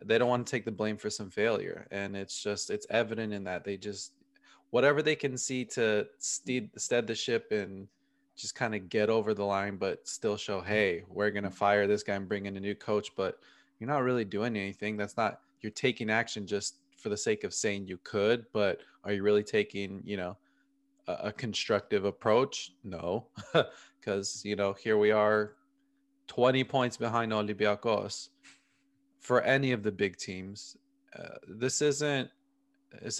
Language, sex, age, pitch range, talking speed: English, male, 20-39, 105-140 Hz, 185 wpm